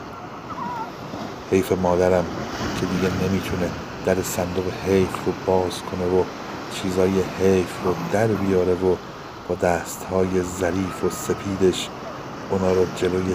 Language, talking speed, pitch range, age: Persian, 120 wpm, 90-100 Hz, 50-69